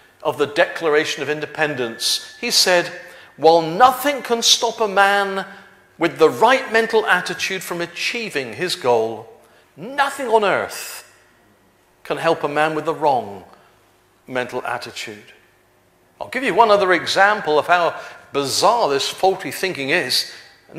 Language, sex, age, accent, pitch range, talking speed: English, male, 50-69, British, 165-255 Hz, 140 wpm